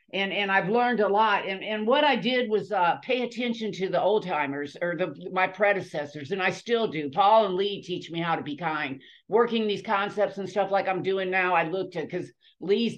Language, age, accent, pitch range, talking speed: English, 50-69, American, 190-240 Hz, 230 wpm